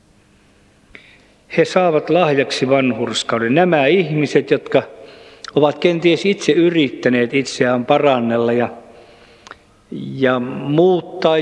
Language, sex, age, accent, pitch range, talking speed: Finnish, male, 50-69, native, 115-155 Hz, 85 wpm